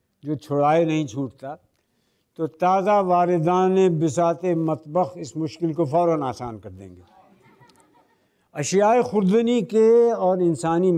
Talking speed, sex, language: 115 wpm, male, Hindi